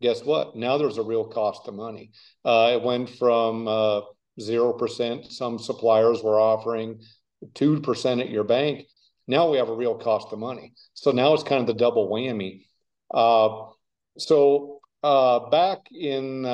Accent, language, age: American, English, 50-69